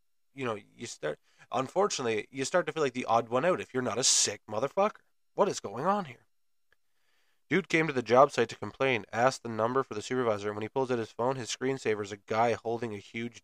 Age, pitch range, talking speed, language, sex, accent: 20-39, 105-135 Hz, 240 wpm, English, male, American